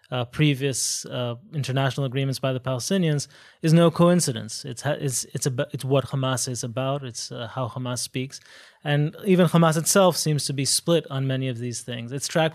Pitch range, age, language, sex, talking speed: 135-165 Hz, 30-49, English, male, 175 wpm